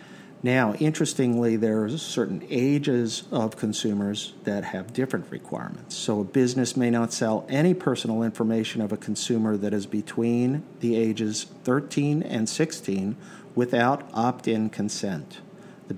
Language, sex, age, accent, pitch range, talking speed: English, male, 50-69, American, 110-140 Hz, 135 wpm